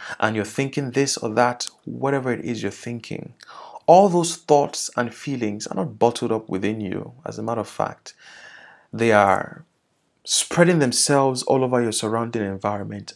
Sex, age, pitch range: male, 30-49, 125-175 Hz